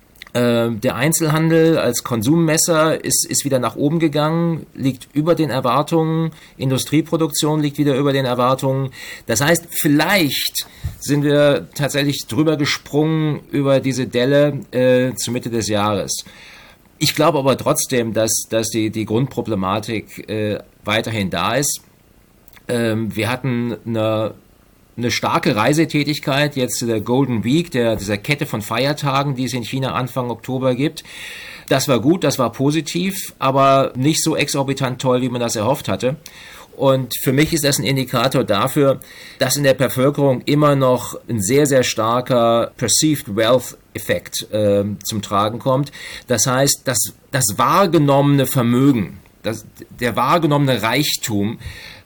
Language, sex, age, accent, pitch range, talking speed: German, male, 50-69, German, 115-145 Hz, 140 wpm